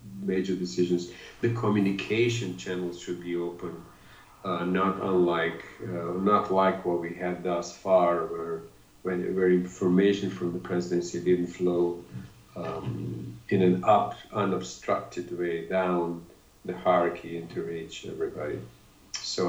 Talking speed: 125 wpm